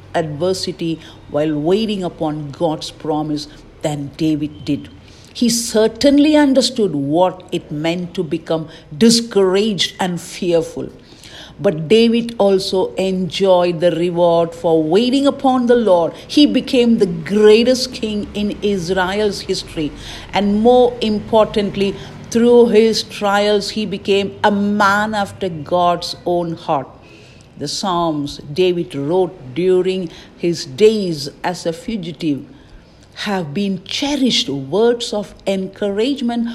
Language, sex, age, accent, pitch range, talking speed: English, female, 50-69, Indian, 165-215 Hz, 115 wpm